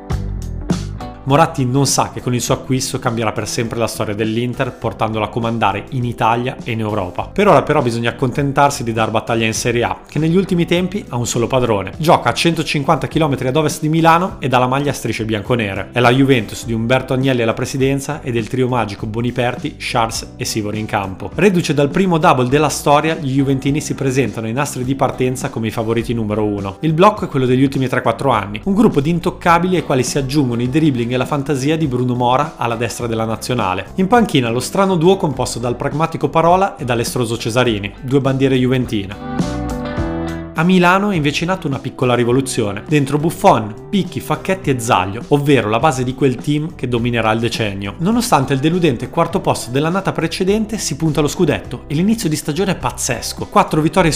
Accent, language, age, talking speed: native, Italian, 30-49, 200 wpm